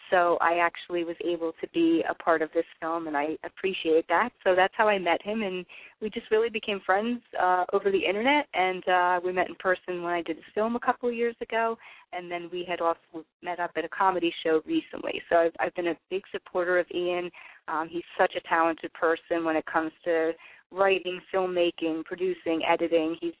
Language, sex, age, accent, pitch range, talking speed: English, female, 30-49, American, 165-195 Hz, 215 wpm